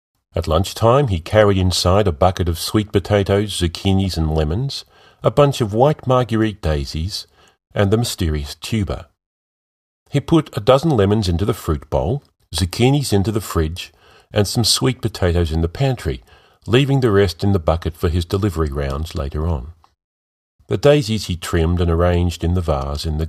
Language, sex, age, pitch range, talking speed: English, male, 40-59, 75-100 Hz, 170 wpm